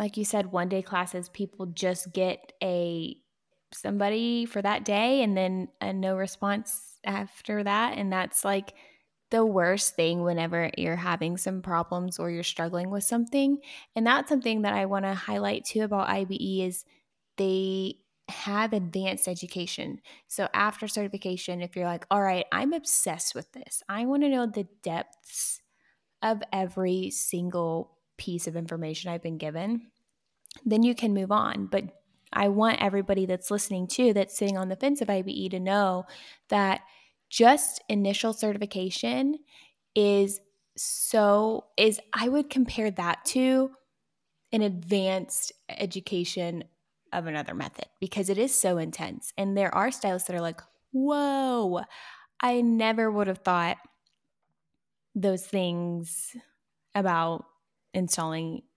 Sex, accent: female, American